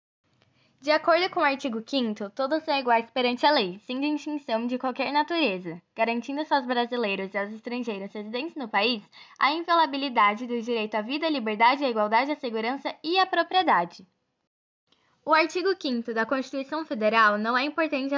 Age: 10-29